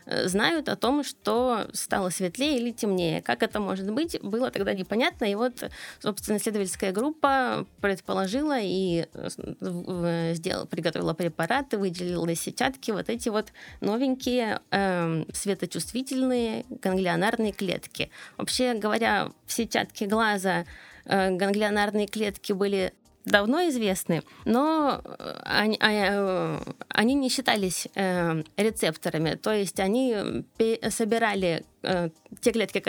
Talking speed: 110 wpm